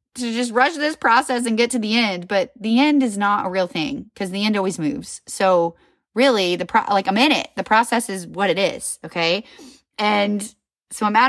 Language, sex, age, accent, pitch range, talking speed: English, female, 20-39, American, 180-245 Hz, 225 wpm